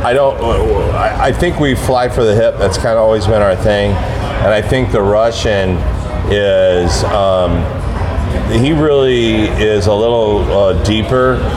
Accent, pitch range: American, 95-115 Hz